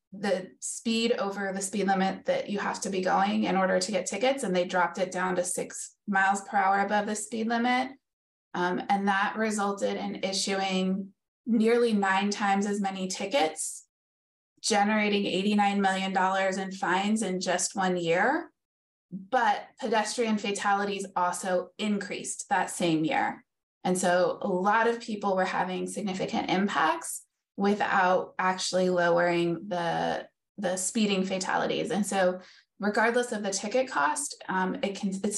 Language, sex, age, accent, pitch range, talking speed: English, female, 20-39, American, 185-215 Hz, 150 wpm